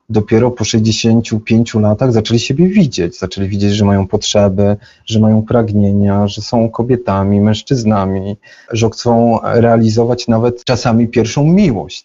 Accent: native